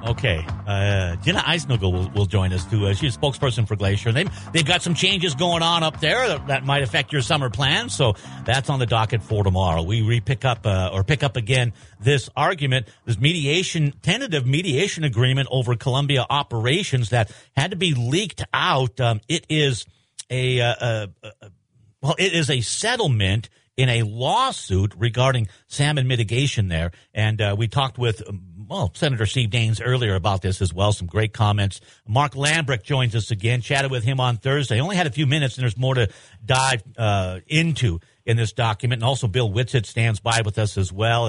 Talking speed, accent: 195 wpm, American